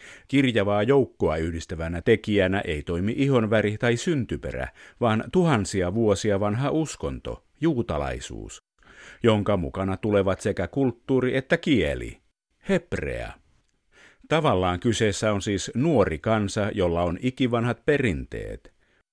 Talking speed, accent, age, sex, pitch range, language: 105 wpm, native, 50-69, male, 95-120 Hz, Finnish